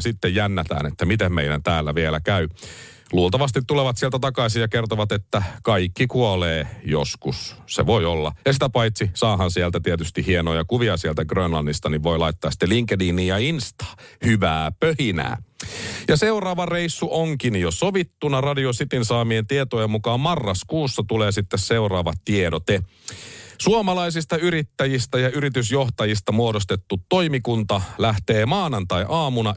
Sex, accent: male, native